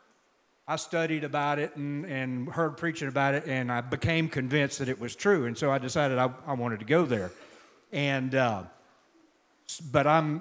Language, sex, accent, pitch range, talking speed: English, male, American, 130-165 Hz, 185 wpm